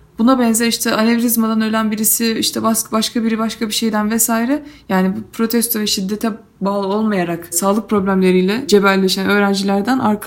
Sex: female